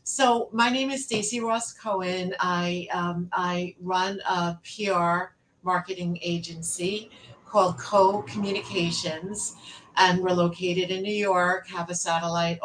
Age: 50-69